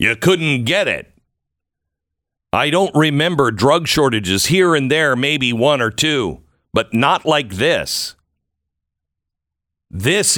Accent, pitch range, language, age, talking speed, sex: American, 100-160 Hz, English, 50-69, 120 wpm, male